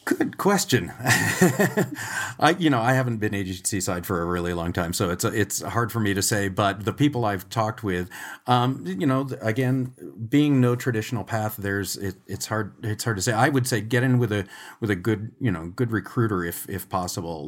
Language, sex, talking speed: English, male, 215 wpm